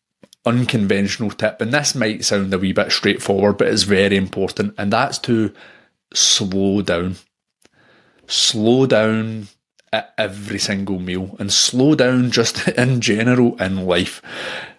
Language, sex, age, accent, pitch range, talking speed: English, male, 30-49, British, 95-115 Hz, 135 wpm